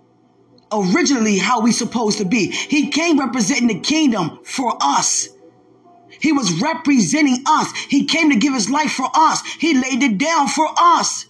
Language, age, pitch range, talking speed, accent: English, 20-39, 225-315 Hz, 165 wpm, American